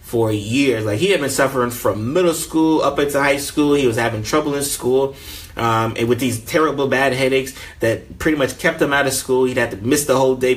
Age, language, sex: 20-39, English, male